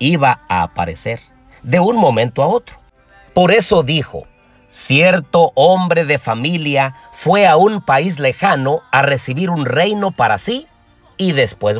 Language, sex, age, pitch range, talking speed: Spanish, male, 50-69, 110-170 Hz, 140 wpm